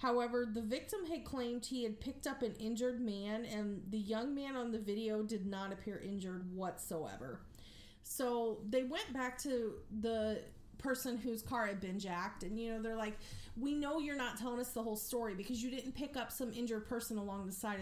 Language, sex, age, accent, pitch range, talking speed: English, female, 30-49, American, 200-250 Hz, 205 wpm